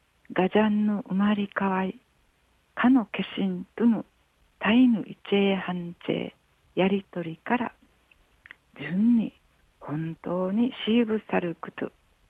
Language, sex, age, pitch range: Japanese, female, 60-79, 165-215 Hz